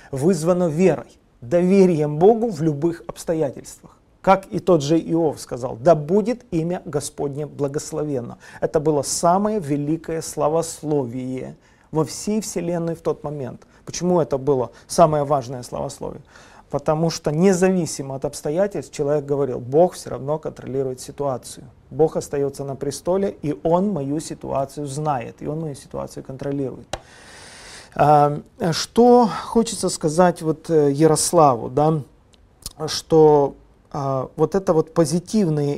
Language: Russian